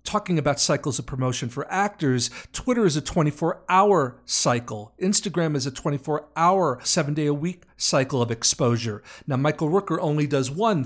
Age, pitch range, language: 40-59, 125-165 Hz, English